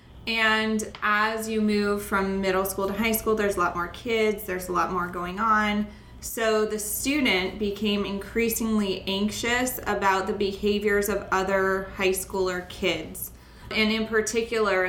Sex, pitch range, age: female, 190-210 Hz, 20-39